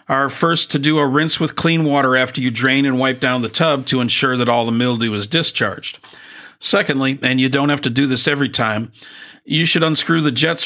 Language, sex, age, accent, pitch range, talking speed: English, male, 50-69, American, 125-150 Hz, 225 wpm